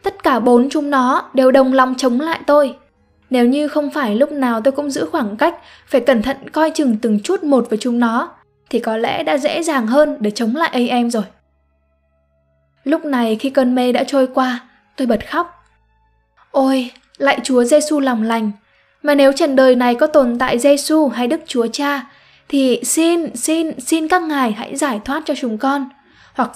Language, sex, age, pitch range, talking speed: Vietnamese, female, 10-29, 235-295 Hz, 200 wpm